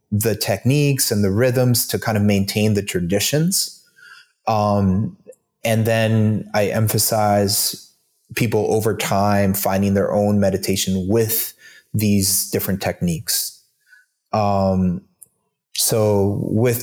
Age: 20-39